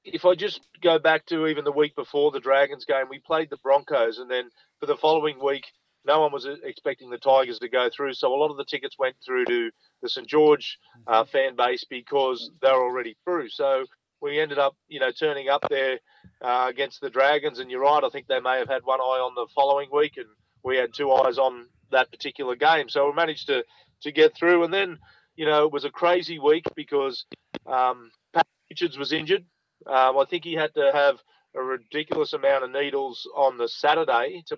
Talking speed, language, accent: 220 wpm, English, Australian